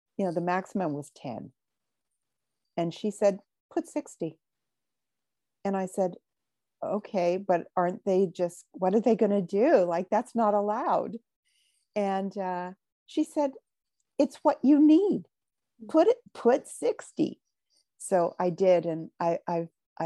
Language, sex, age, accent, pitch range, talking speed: English, female, 50-69, American, 165-210 Hz, 140 wpm